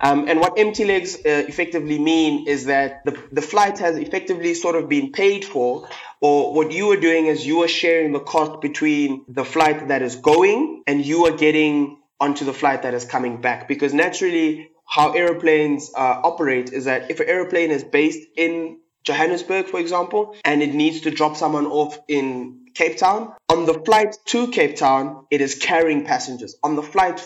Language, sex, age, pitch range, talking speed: English, male, 20-39, 140-170 Hz, 195 wpm